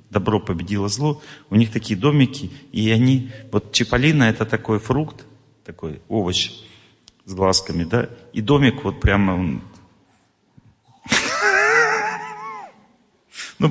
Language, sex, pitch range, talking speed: Russian, male, 100-125 Hz, 105 wpm